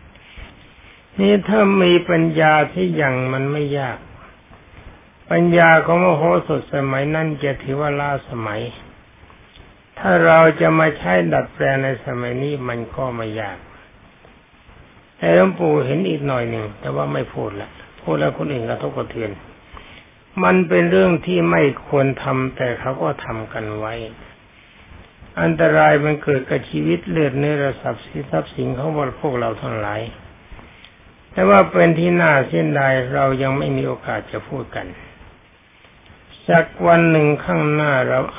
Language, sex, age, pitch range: Thai, male, 60-79, 115-160 Hz